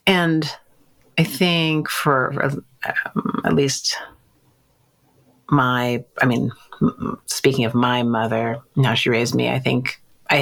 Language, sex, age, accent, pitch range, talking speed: English, female, 40-59, American, 125-145 Hz, 120 wpm